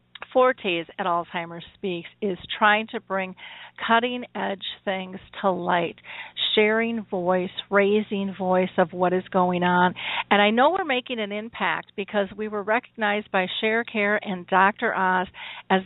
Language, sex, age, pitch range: English, female, 50-69, 180-215 Hz